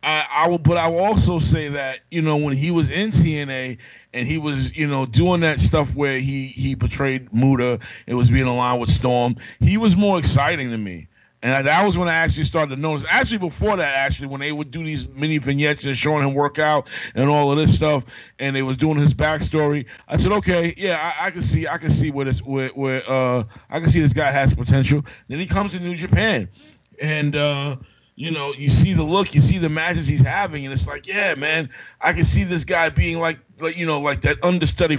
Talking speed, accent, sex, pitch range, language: 235 wpm, American, male, 130-155 Hz, English